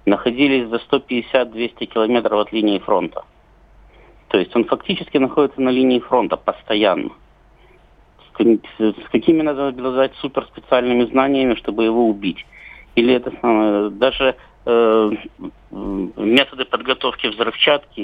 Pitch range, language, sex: 105-130 Hz, Russian, male